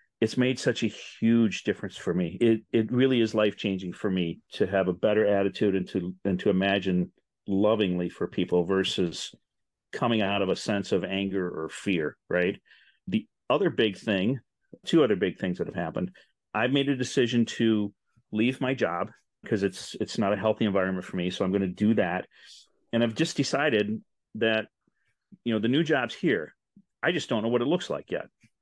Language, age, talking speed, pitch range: English, 40-59, 195 wpm, 100-125 Hz